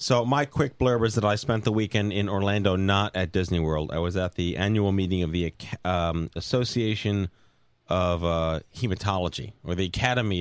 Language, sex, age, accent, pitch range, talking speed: English, male, 30-49, American, 90-110 Hz, 185 wpm